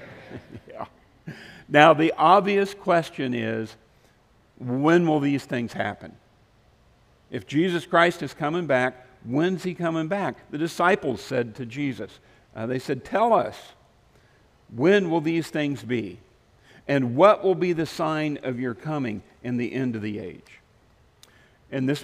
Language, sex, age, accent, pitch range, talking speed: English, male, 50-69, American, 115-160 Hz, 145 wpm